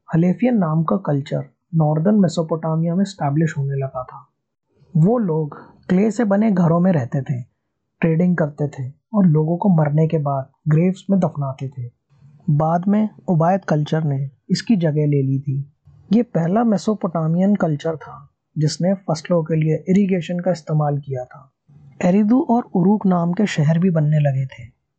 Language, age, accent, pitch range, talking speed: Hindi, 20-39, native, 145-195 Hz, 160 wpm